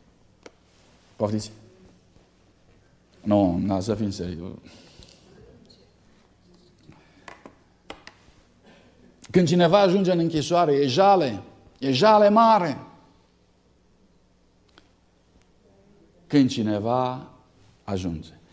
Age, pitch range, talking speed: 50-69, 125-210 Hz, 65 wpm